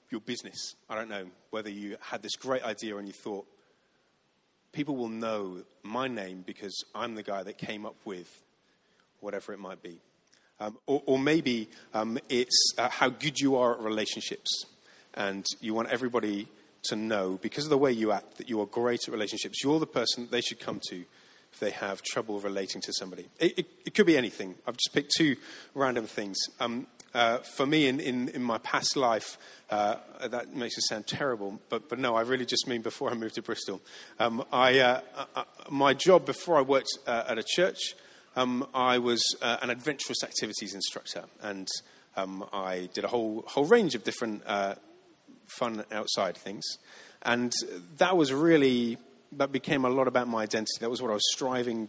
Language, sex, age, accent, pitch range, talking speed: English, male, 30-49, British, 105-130 Hz, 195 wpm